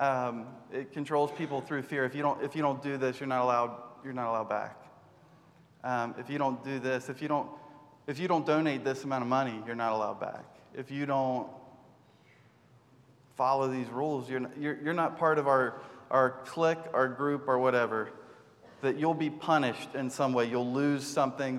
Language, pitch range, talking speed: English, 125-150 Hz, 200 wpm